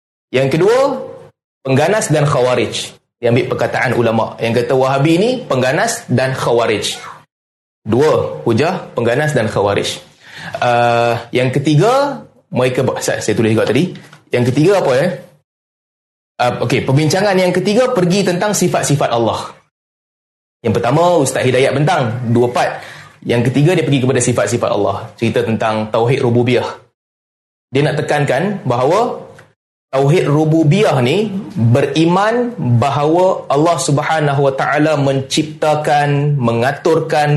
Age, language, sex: 20-39, Malay, male